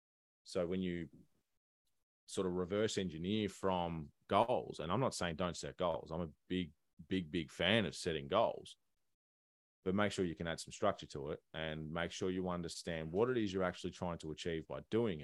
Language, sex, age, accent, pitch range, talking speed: English, male, 30-49, Australian, 80-100 Hz, 195 wpm